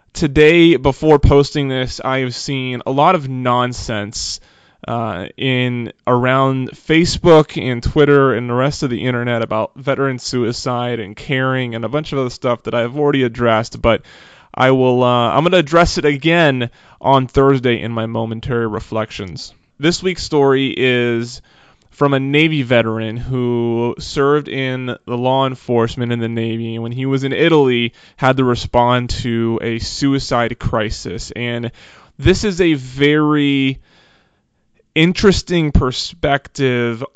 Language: English